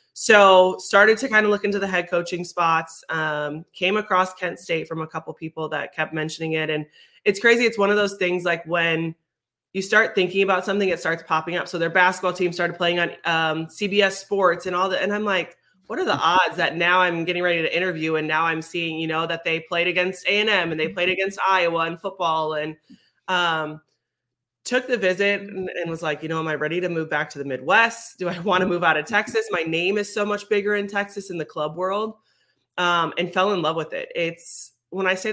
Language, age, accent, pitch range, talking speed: English, 20-39, American, 160-190 Hz, 235 wpm